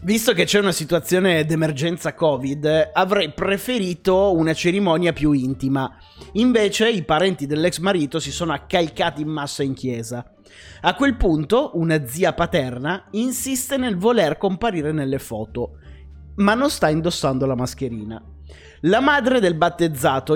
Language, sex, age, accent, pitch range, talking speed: Italian, male, 30-49, native, 145-205 Hz, 140 wpm